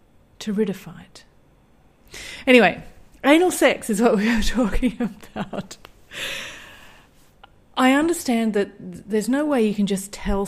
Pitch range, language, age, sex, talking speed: 180-225 Hz, English, 40-59, female, 125 wpm